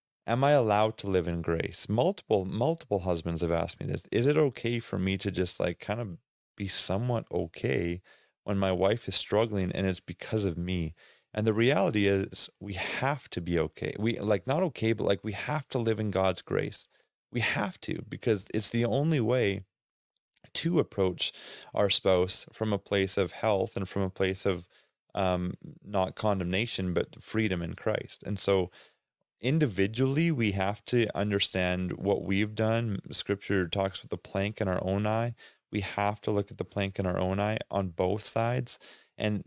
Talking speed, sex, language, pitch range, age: 185 wpm, male, English, 95-110 Hz, 30-49